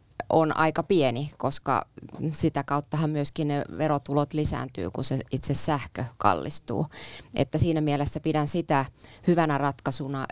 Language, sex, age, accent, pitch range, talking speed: Finnish, female, 20-39, native, 130-150 Hz, 130 wpm